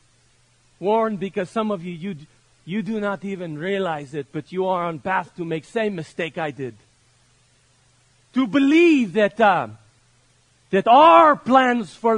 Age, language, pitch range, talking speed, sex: 40-59, English, 125-200 Hz, 155 wpm, male